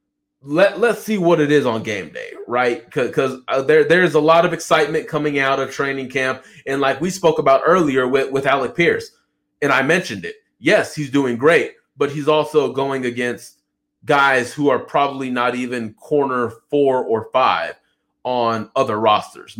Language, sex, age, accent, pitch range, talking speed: English, male, 30-49, American, 115-160 Hz, 180 wpm